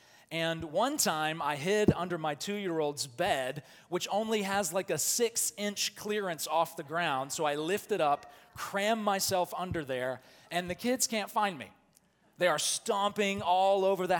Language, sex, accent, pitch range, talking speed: English, male, American, 150-195 Hz, 170 wpm